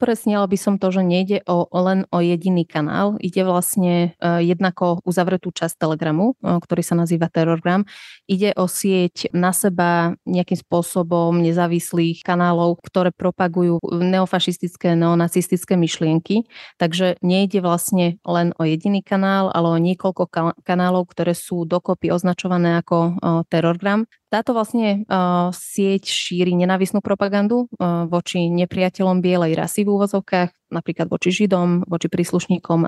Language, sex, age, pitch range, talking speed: Slovak, female, 20-39, 170-185 Hz, 135 wpm